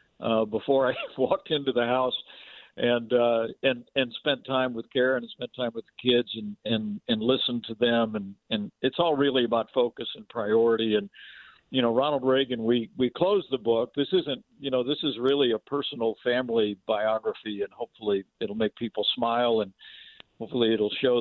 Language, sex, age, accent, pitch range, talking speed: English, male, 60-79, American, 110-130 Hz, 190 wpm